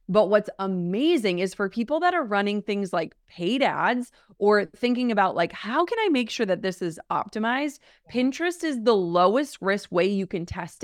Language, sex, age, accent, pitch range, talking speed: English, female, 30-49, American, 190-255 Hz, 195 wpm